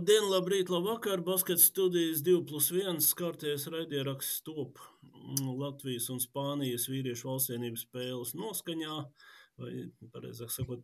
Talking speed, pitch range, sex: 110 wpm, 125-155 Hz, male